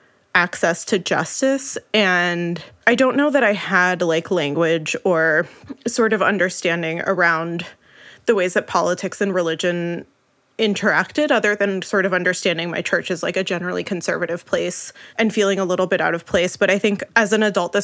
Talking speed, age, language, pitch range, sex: 175 wpm, 20-39, English, 175-215 Hz, female